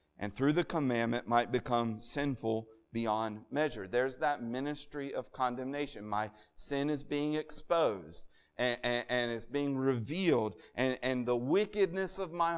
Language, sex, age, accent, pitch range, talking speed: English, male, 40-59, American, 110-150 Hz, 145 wpm